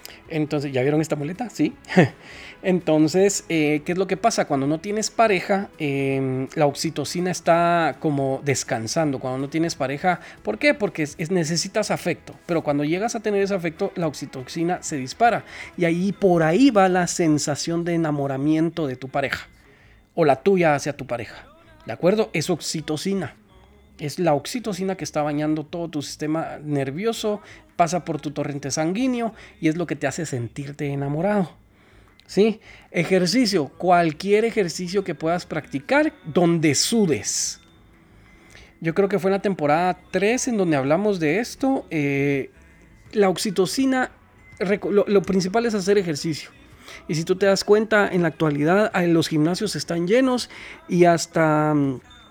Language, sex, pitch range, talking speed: Spanish, male, 145-195 Hz, 155 wpm